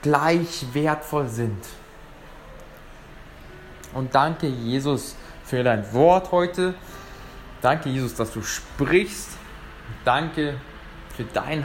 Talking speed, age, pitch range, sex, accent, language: 95 wpm, 20-39, 125-170 Hz, male, German, German